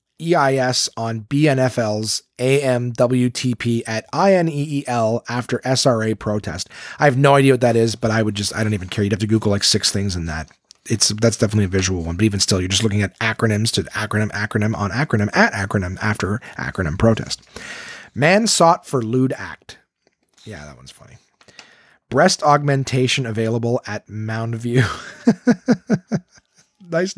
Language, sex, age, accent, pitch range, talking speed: English, male, 30-49, American, 110-145 Hz, 170 wpm